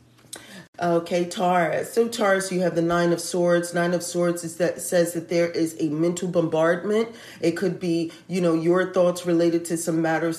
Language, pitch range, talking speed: English, 165-190 Hz, 190 wpm